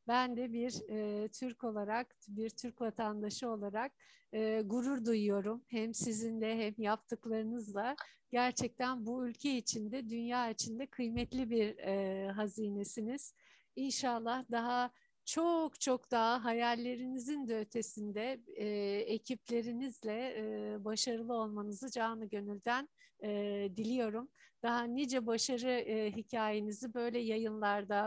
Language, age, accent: Turkish, 60-79, native